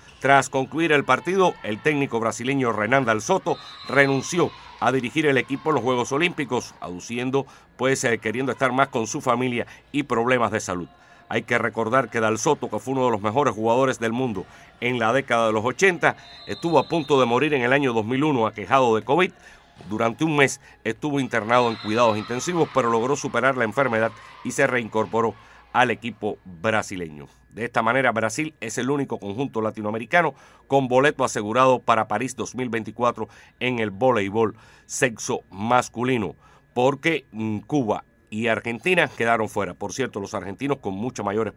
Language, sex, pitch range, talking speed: Spanish, male, 110-135 Hz, 165 wpm